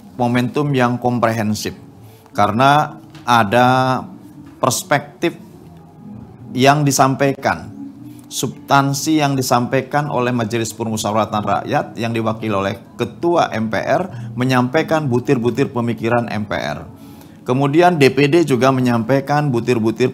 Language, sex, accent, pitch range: Indonesian, male, native, 110-140 Hz